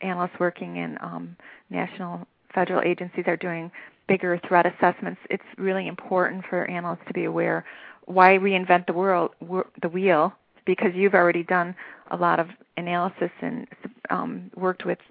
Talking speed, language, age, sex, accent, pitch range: 145 wpm, English, 30-49, female, American, 180-215 Hz